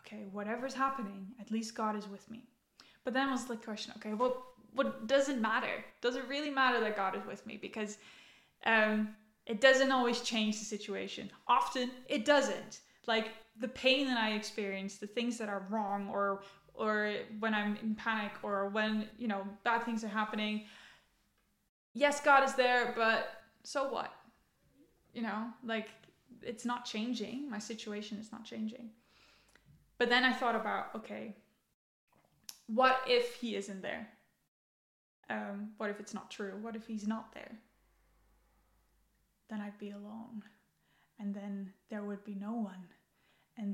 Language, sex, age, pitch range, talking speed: English, female, 10-29, 210-245 Hz, 160 wpm